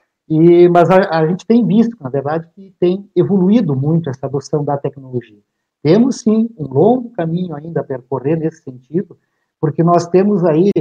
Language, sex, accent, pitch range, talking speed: Portuguese, male, Brazilian, 145-175 Hz, 170 wpm